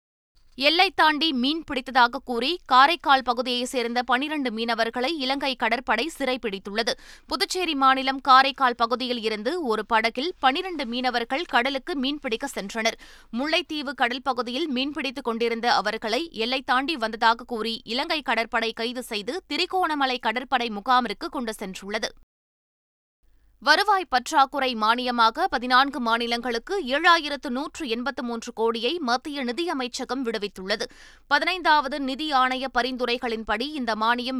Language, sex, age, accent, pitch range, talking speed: Tamil, female, 20-39, native, 230-285 Hz, 105 wpm